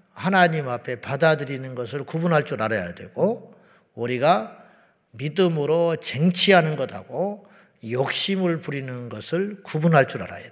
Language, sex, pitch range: Korean, male, 125-175 Hz